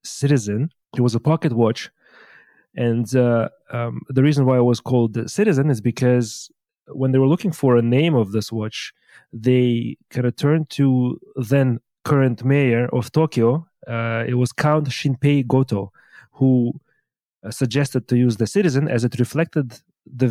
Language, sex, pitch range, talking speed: English, male, 120-145 Hz, 165 wpm